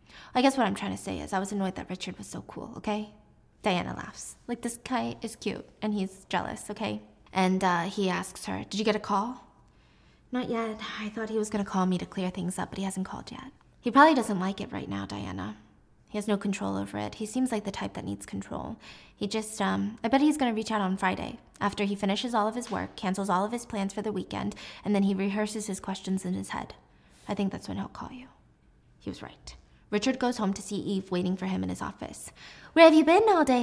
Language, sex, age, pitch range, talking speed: English, female, 20-39, 195-250 Hz, 250 wpm